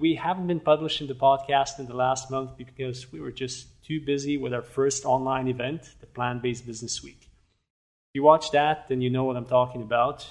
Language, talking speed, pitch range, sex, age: English, 210 wpm, 125-140 Hz, male, 30-49